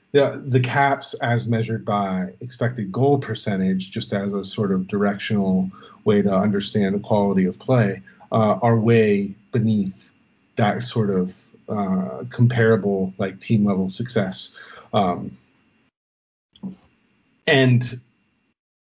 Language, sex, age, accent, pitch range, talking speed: English, male, 40-59, American, 105-135 Hz, 120 wpm